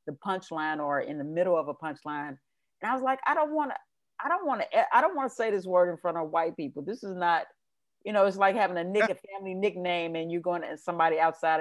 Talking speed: 275 wpm